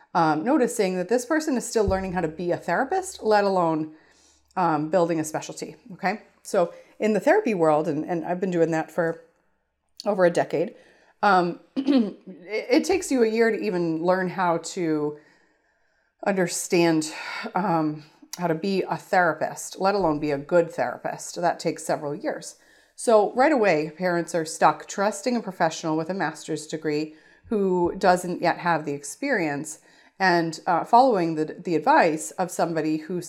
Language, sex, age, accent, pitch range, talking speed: English, female, 30-49, American, 155-200 Hz, 165 wpm